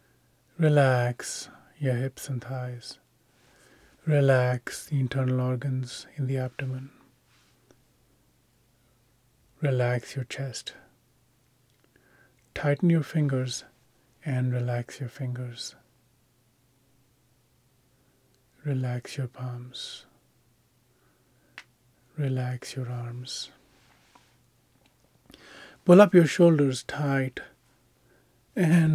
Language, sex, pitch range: English, male, 125-135 Hz